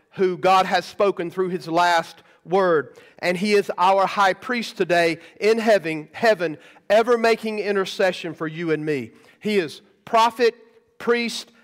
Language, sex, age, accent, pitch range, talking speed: English, male, 40-59, American, 170-220 Hz, 150 wpm